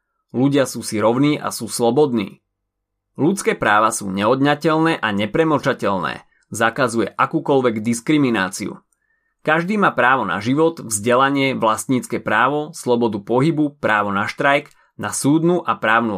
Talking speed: 120 wpm